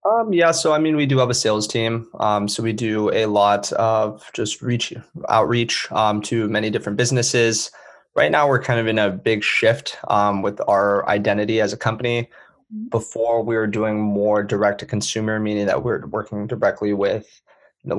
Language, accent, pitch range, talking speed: English, American, 105-120 Hz, 190 wpm